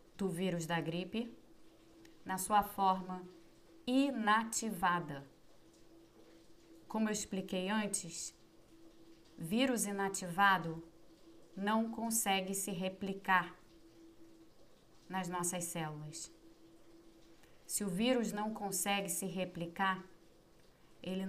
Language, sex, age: Portuguese, female, 20-39